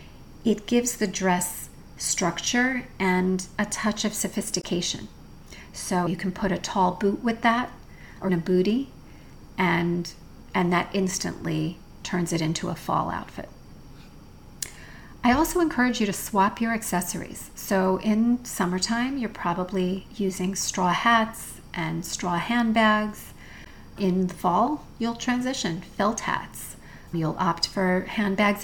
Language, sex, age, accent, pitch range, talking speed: English, female, 40-59, American, 175-215 Hz, 130 wpm